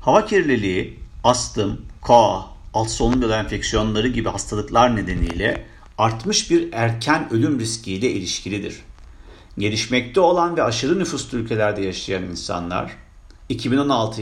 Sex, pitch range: male, 100-140 Hz